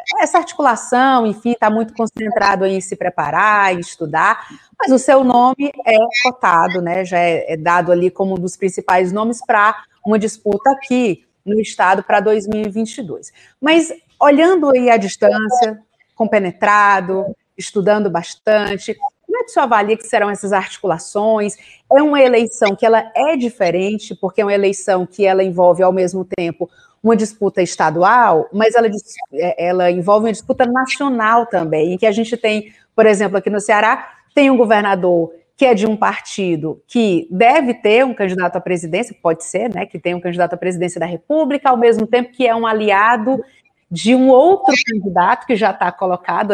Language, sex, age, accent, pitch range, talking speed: Portuguese, female, 30-49, Brazilian, 185-245 Hz, 170 wpm